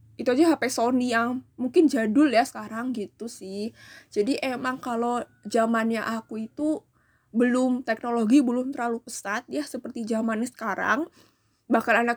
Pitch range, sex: 220-270 Hz, female